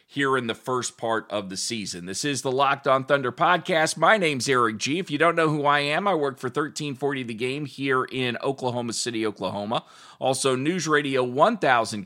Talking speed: 205 wpm